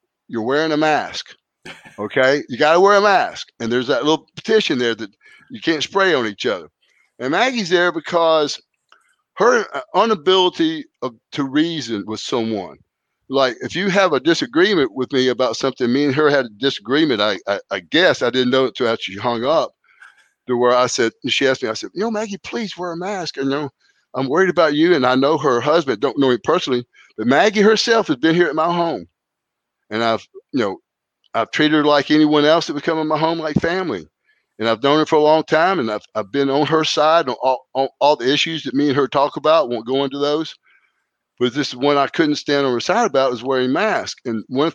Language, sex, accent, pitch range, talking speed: English, male, American, 130-175 Hz, 230 wpm